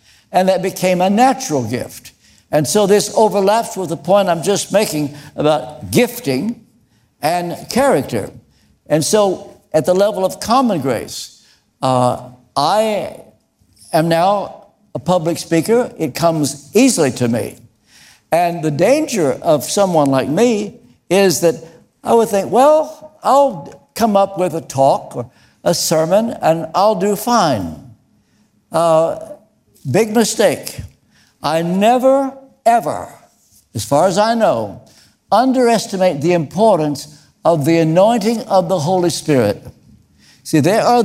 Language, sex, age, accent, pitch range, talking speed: English, male, 60-79, American, 160-225 Hz, 130 wpm